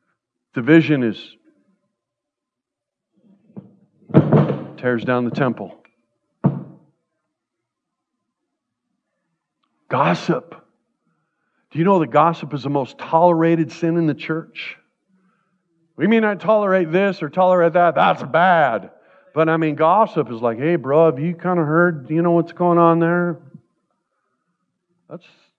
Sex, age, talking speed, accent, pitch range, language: male, 50-69, 120 wpm, American, 145-170 Hz, English